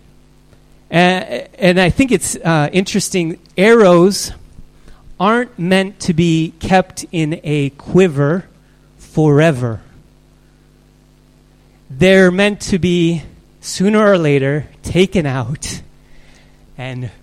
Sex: male